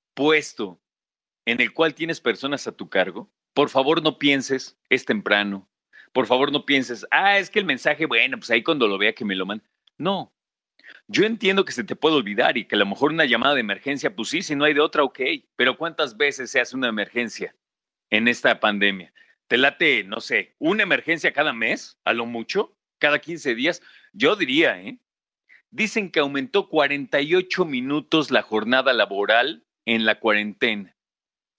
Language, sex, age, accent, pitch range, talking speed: Spanish, male, 40-59, Mexican, 115-160 Hz, 185 wpm